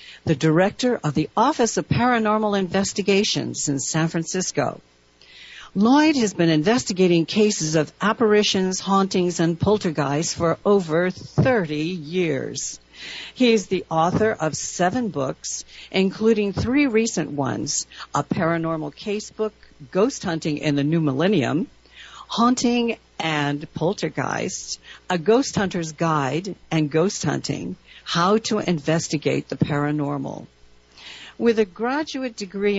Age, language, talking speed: 50-69, English, 115 wpm